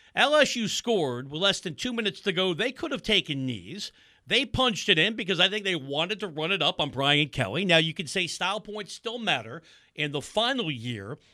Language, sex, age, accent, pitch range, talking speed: English, male, 50-69, American, 140-190 Hz, 220 wpm